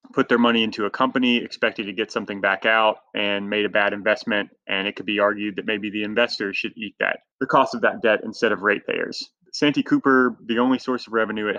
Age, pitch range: 20-39, 100-120 Hz